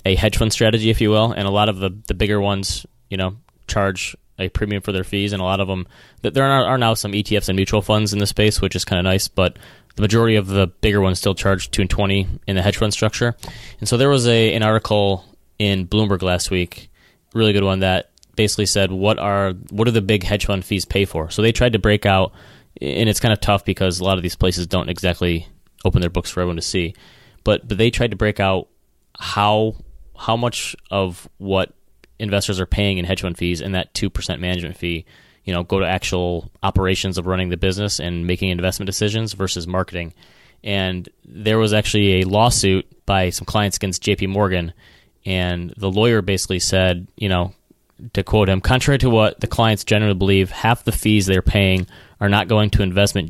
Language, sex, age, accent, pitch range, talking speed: English, male, 20-39, American, 95-105 Hz, 220 wpm